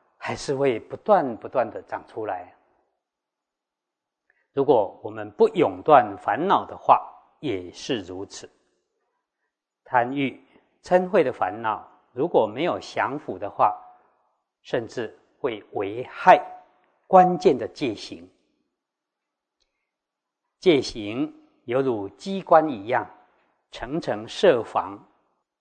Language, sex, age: Chinese, male, 50-69